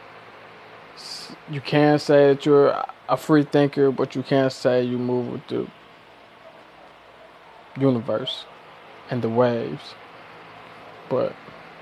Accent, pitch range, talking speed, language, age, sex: American, 120-135 Hz, 110 wpm, English, 20-39, male